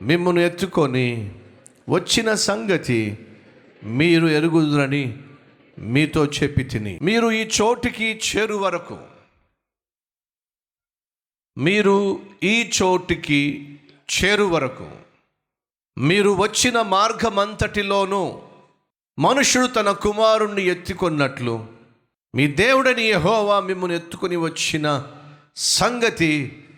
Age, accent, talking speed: 50-69, native, 70 wpm